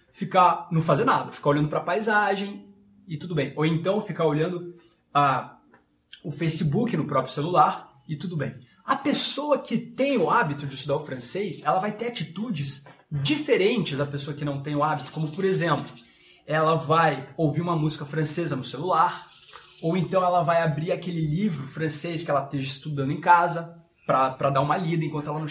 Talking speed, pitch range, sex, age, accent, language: 185 wpm, 145-185 Hz, male, 20-39, Brazilian, Portuguese